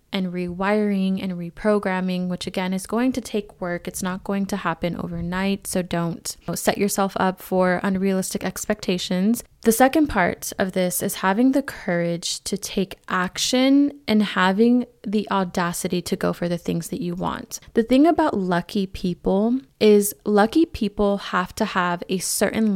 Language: English